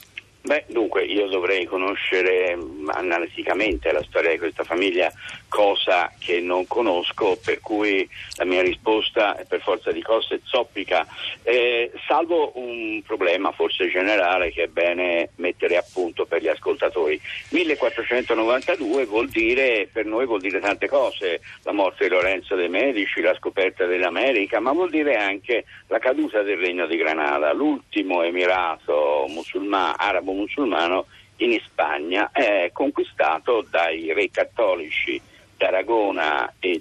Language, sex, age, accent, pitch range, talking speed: Italian, male, 50-69, native, 330-475 Hz, 140 wpm